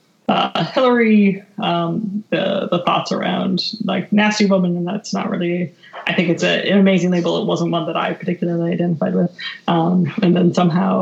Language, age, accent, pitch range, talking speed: English, 20-39, American, 175-205 Hz, 180 wpm